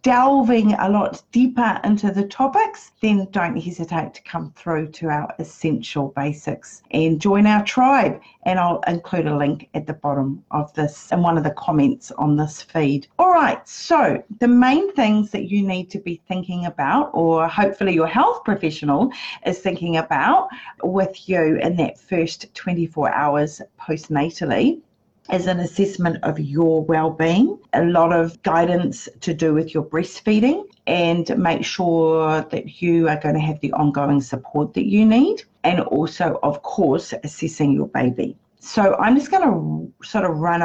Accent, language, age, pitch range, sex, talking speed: Australian, English, 40-59, 155-210 Hz, female, 165 wpm